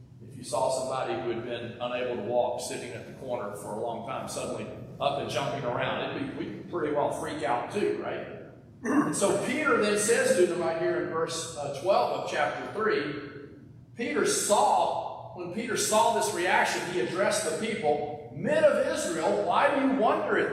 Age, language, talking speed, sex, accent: 50-69, English, 180 wpm, male, American